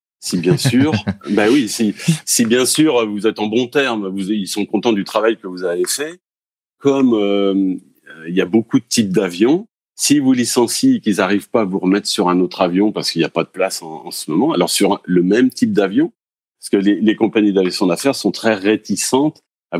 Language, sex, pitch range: French, male, 90-120 Hz